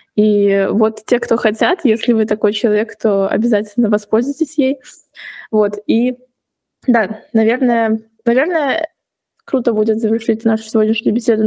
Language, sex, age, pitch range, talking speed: English, female, 20-39, 215-240 Hz, 125 wpm